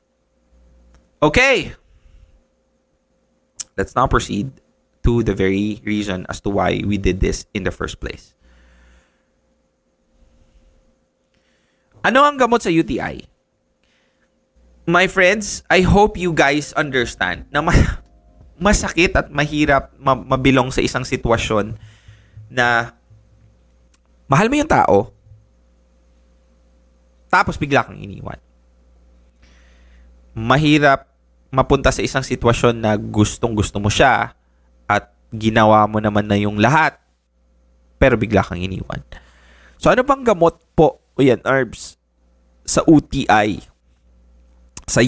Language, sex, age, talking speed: English, male, 20-39, 105 wpm